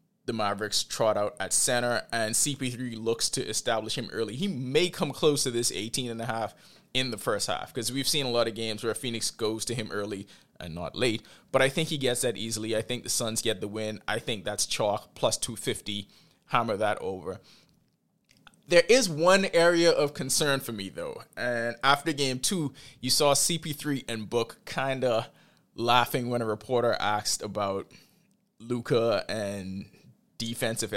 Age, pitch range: 20-39, 110-140 Hz